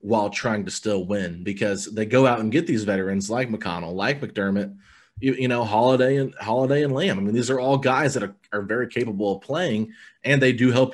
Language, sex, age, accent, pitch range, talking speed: English, male, 30-49, American, 100-125 Hz, 230 wpm